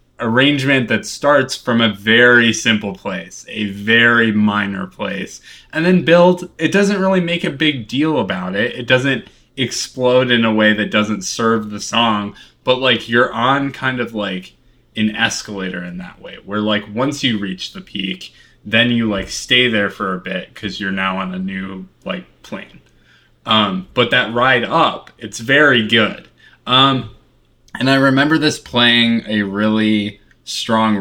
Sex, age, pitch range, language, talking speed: male, 20-39, 105-135 Hz, English, 170 wpm